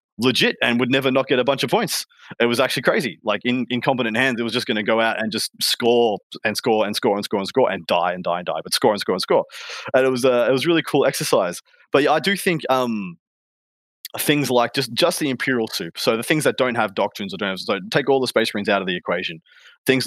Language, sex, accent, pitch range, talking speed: English, male, Australian, 105-130 Hz, 275 wpm